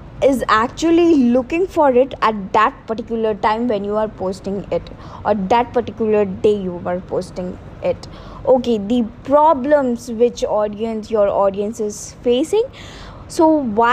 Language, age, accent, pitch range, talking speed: English, 20-39, Indian, 220-275 Hz, 140 wpm